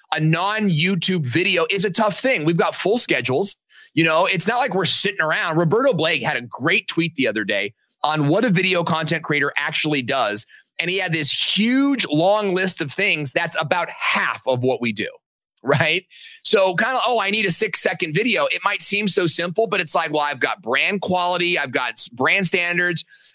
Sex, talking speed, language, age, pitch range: male, 205 wpm, English, 30-49, 150-200 Hz